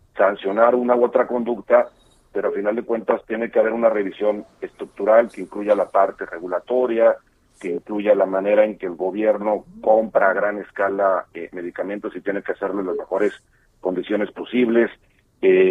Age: 40-59